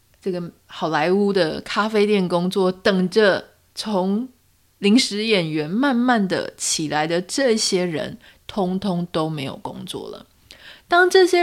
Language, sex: Chinese, female